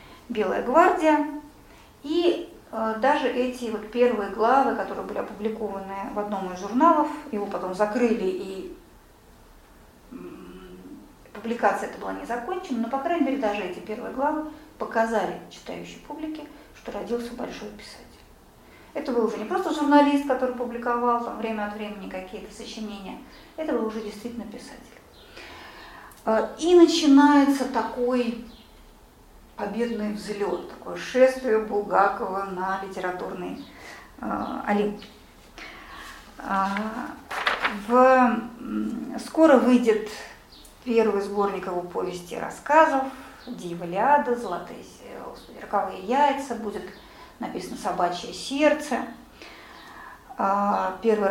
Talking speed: 100 wpm